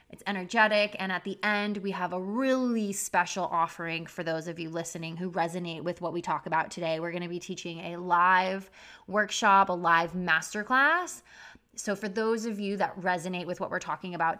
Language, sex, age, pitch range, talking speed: English, female, 20-39, 170-215 Hz, 200 wpm